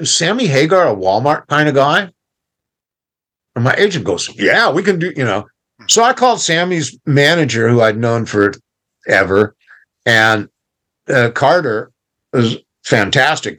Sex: male